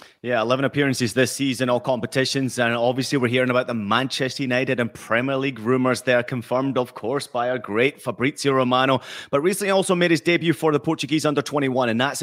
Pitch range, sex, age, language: 120-165 Hz, male, 30-49, English